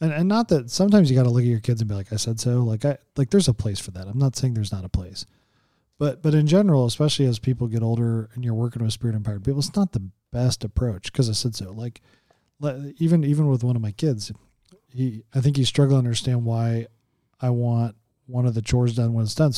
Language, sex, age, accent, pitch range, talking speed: English, male, 40-59, American, 115-140 Hz, 255 wpm